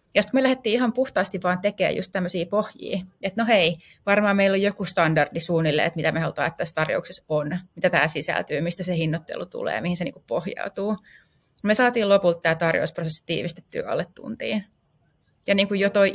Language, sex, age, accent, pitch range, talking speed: Finnish, female, 30-49, native, 170-210 Hz, 190 wpm